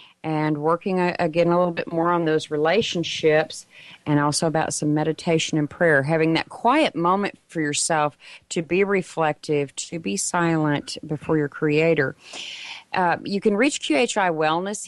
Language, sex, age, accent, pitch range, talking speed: English, female, 40-59, American, 160-200 Hz, 155 wpm